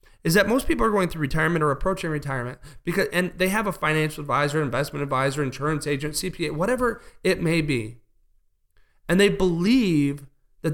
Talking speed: 175 wpm